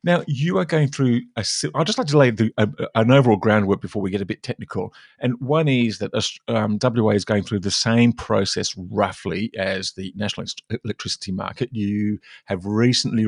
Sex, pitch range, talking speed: male, 105-130 Hz, 190 wpm